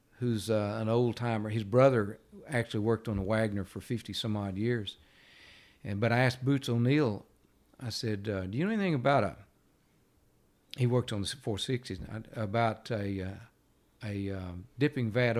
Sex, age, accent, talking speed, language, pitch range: male, 60-79, American, 170 wpm, English, 95-125 Hz